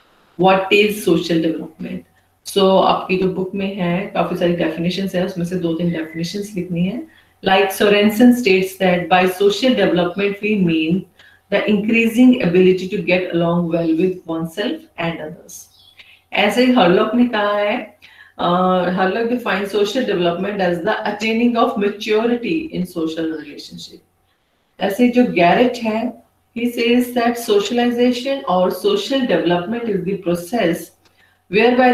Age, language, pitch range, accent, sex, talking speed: 30-49, Hindi, 175-220 Hz, native, female, 105 wpm